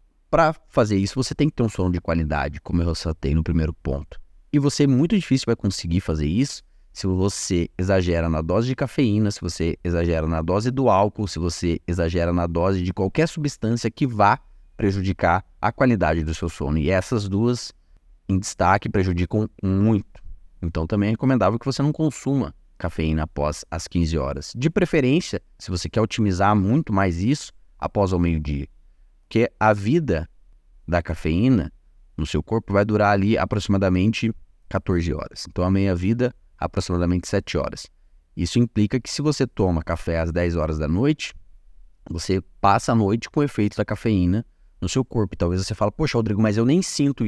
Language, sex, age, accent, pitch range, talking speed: Portuguese, male, 20-39, Brazilian, 85-115 Hz, 180 wpm